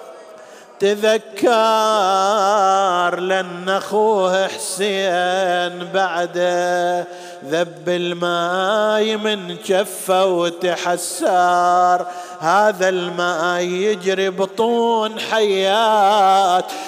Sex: male